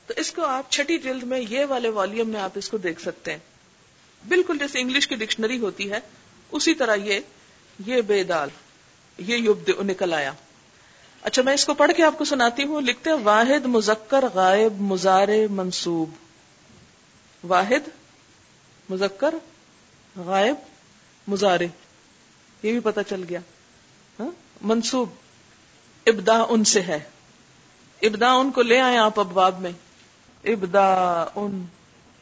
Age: 50-69